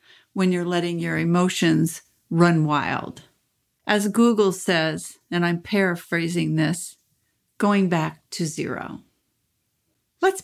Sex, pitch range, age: female, 165-200 Hz, 50-69